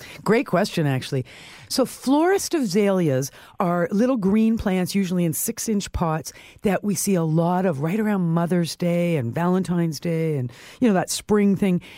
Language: English